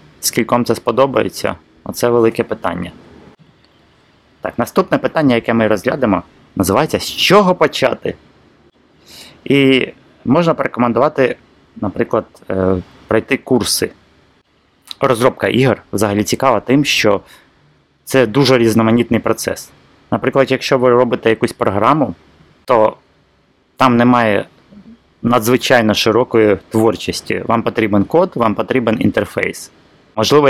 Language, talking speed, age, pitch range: Ukrainian, 100 wpm, 30-49, 105-130 Hz